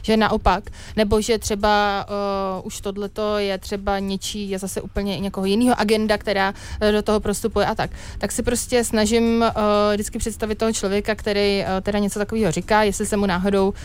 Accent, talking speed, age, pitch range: native, 185 wpm, 30-49, 195-215 Hz